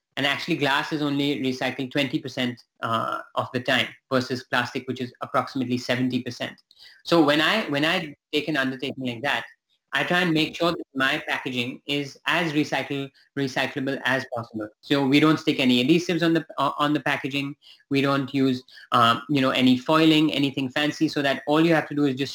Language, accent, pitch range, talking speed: English, Indian, 130-155 Hz, 195 wpm